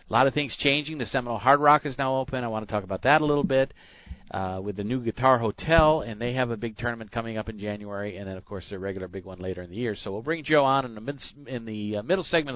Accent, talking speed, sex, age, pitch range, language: American, 285 wpm, male, 40-59, 105-140 Hz, English